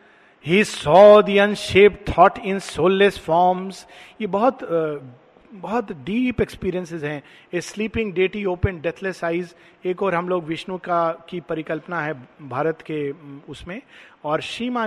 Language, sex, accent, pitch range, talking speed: Hindi, male, native, 165-215 Hz, 135 wpm